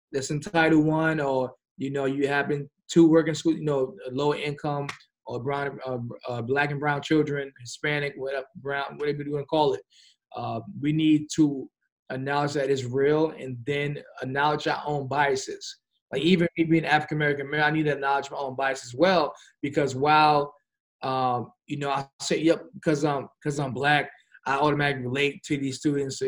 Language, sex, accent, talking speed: English, male, American, 185 wpm